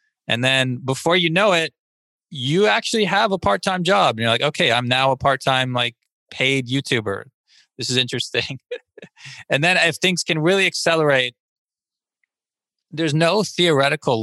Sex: male